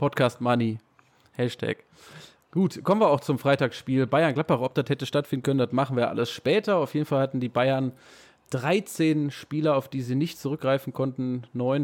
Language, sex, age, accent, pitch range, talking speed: German, male, 20-39, German, 120-140 Hz, 175 wpm